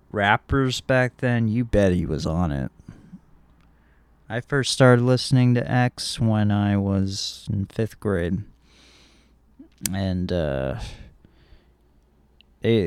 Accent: American